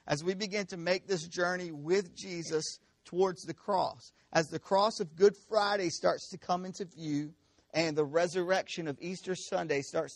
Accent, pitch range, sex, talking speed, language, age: American, 130-170 Hz, male, 175 wpm, English, 50-69